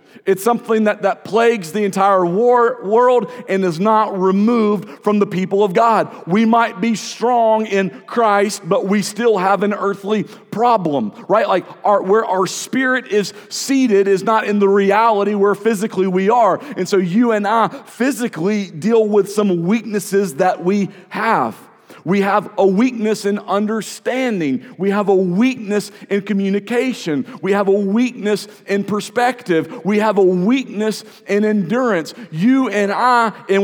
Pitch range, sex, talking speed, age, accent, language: 195-230 Hz, male, 160 wpm, 40-59, American, English